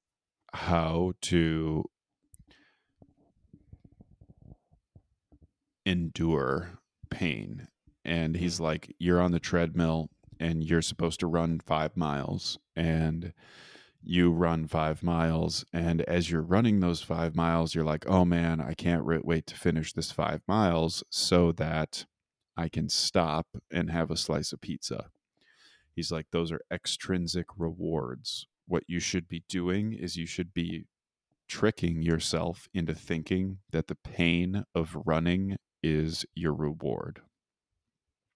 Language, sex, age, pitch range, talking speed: English, male, 30-49, 80-85 Hz, 125 wpm